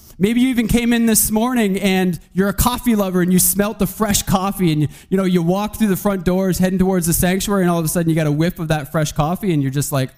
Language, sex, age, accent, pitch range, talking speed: English, male, 20-39, American, 155-225 Hz, 290 wpm